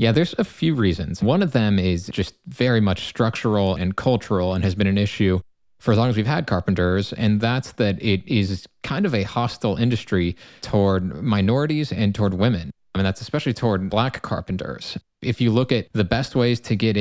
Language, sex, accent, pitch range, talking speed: English, male, American, 95-115 Hz, 205 wpm